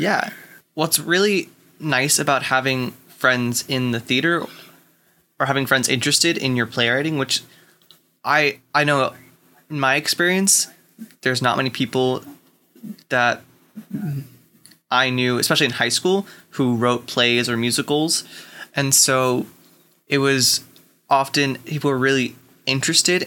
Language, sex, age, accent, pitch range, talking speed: English, male, 20-39, American, 125-150 Hz, 125 wpm